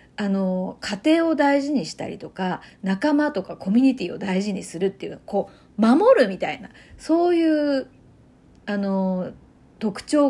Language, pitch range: Japanese, 195-275 Hz